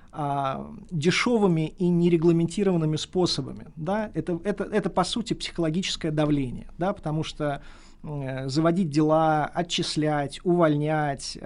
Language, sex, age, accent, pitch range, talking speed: Russian, male, 20-39, native, 150-180 Hz, 105 wpm